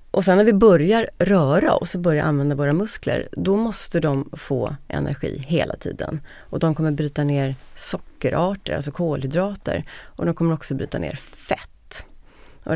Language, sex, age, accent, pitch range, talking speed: Swedish, female, 30-49, native, 145-175 Hz, 165 wpm